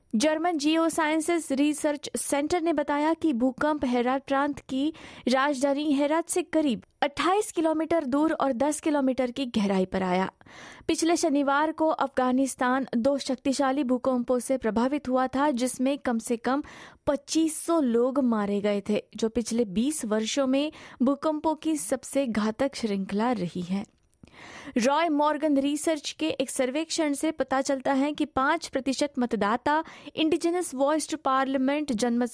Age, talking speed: 20-39, 140 wpm